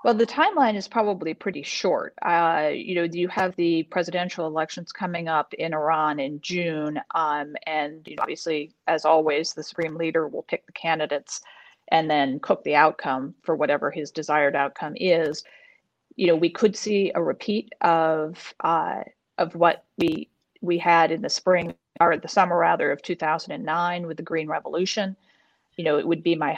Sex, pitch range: female, 155-185 Hz